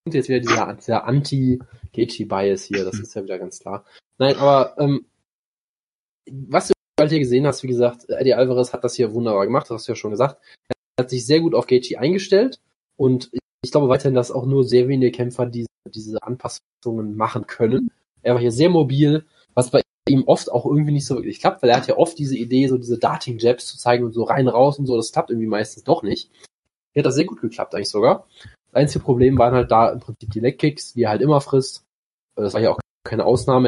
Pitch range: 120-140 Hz